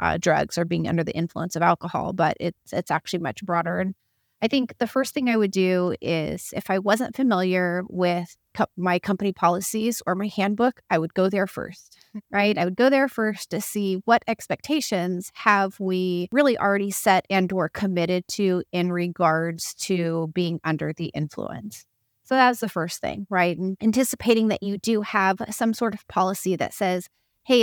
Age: 30-49